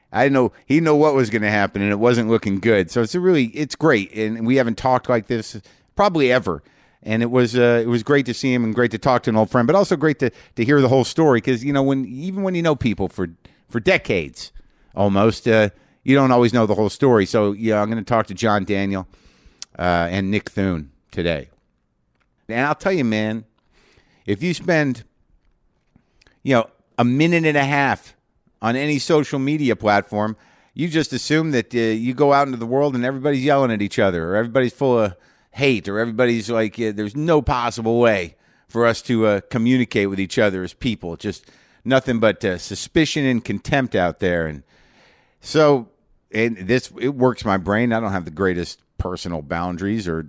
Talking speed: 210 wpm